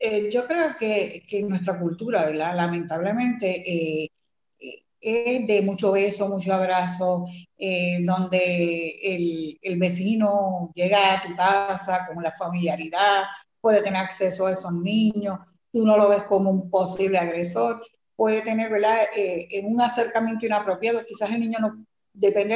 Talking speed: 145 wpm